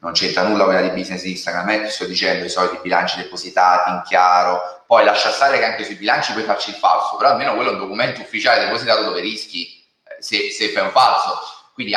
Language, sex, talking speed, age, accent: Italian, male, 235 wpm, 30-49, native